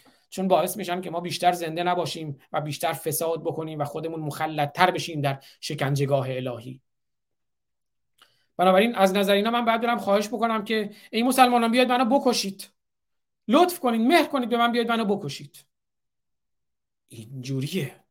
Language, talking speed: Persian, 145 wpm